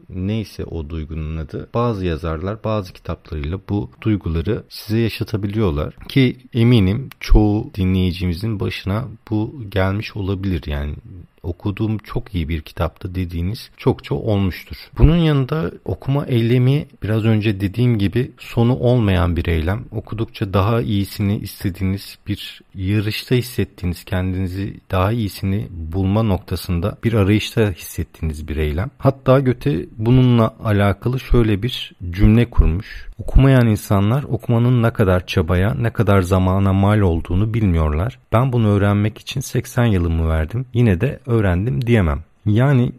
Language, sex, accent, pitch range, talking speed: Turkish, male, native, 95-115 Hz, 125 wpm